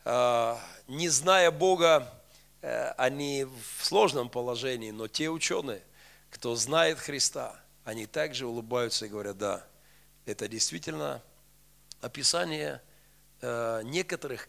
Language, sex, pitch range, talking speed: Russian, male, 130-175 Hz, 95 wpm